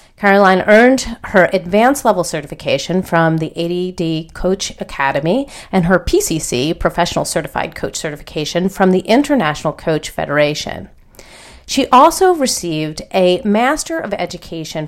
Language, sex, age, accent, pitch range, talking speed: English, female, 40-59, American, 160-235 Hz, 120 wpm